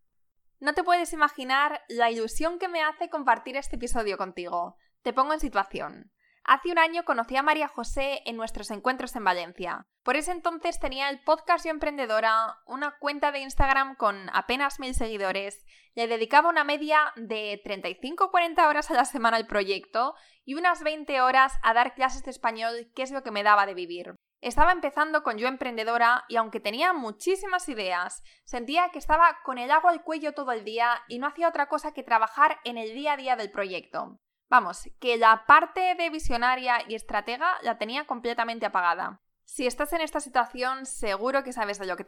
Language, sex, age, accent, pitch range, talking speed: Spanish, female, 20-39, Spanish, 225-305 Hz, 190 wpm